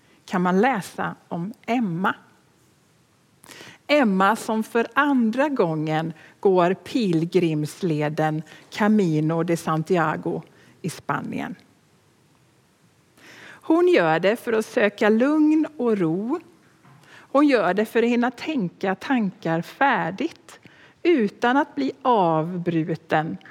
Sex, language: female, Swedish